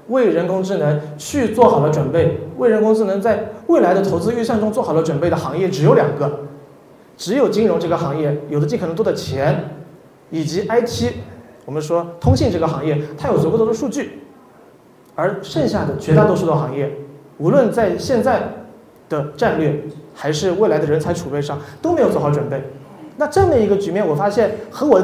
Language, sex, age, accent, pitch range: Chinese, male, 30-49, native, 150-215 Hz